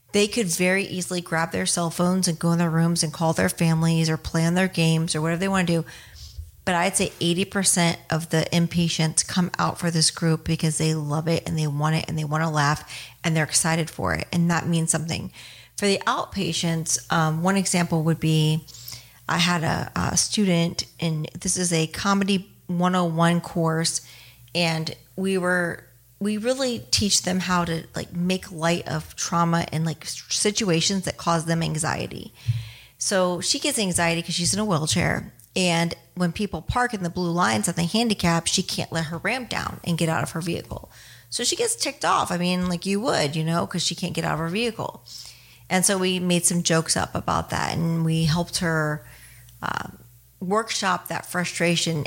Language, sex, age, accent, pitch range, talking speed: English, female, 40-59, American, 160-180 Hz, 200 wpm